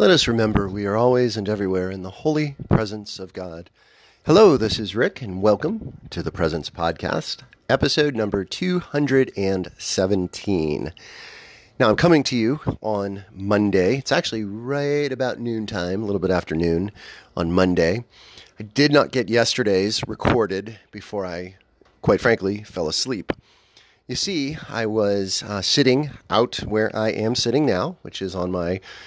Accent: American